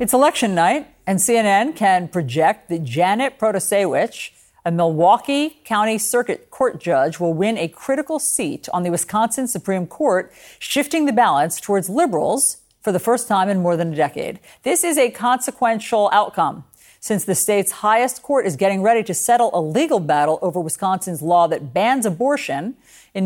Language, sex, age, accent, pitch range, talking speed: English, female, 50-69, American, 170-240 Hz, 170 wpm